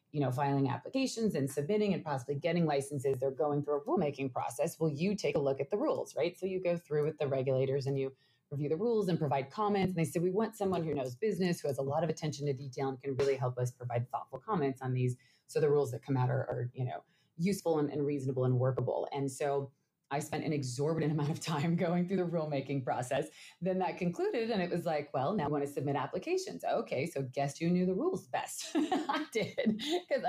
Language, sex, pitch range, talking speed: English, female, 140-180 Hz, 240 wpm